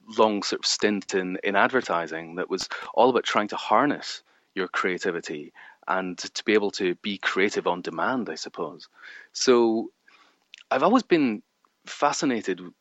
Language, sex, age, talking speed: English, male, 30-49, 150 wpm